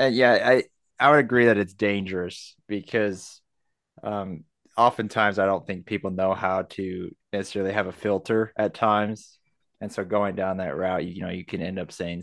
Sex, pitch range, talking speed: male, 95-115 Hz, 185 wpm